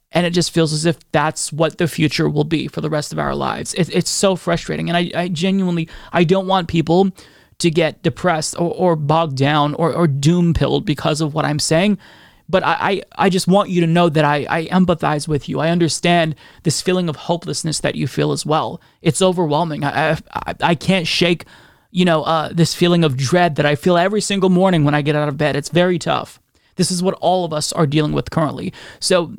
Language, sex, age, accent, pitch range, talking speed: English, male, 30-49, American, 160-180 Hz, 225 wpm